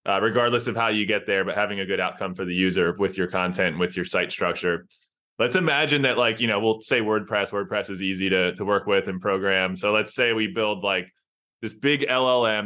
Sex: male